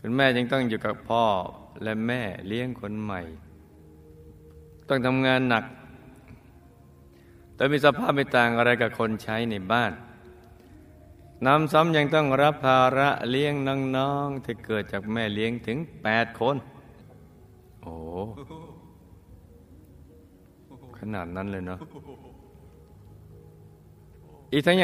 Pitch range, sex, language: 95-130 Hz, male, Thai